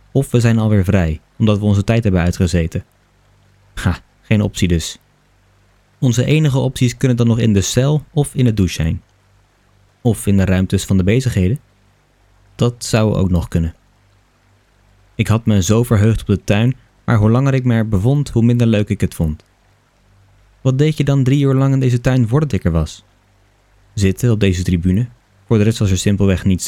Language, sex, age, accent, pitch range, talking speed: Dutch, male, 20-39, Dutch, 95-115 Hz, 195 wpm